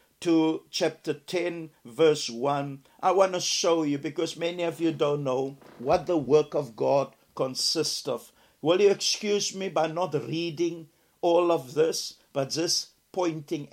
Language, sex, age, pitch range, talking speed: English, male, 60-79, 140-175 Hz, 155 wpm